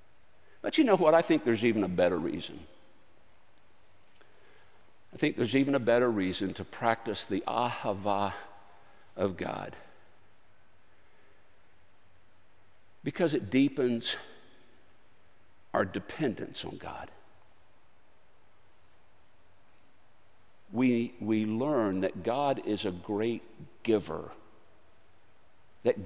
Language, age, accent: English, 60-79, American